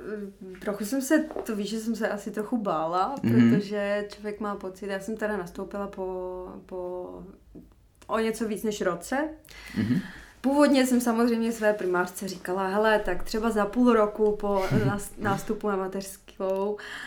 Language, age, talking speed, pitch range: Czech, 20-39, 150 wpm, 185-215 Hz